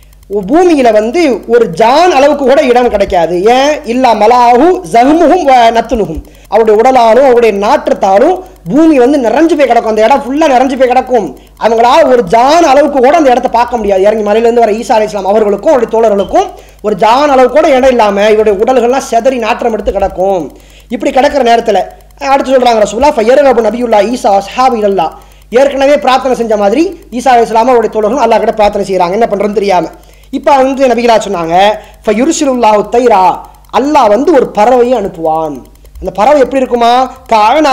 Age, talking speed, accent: 20-39, 125 wpm, Indian